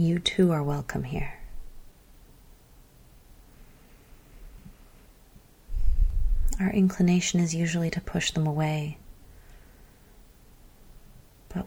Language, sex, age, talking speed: English, female, 30-49, 70 wpm